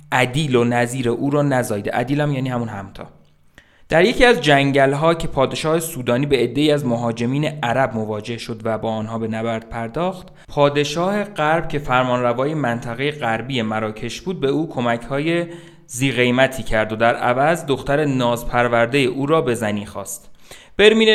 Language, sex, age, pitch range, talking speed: Persian, male, 30-49, 115-145 Hz, 155 wpm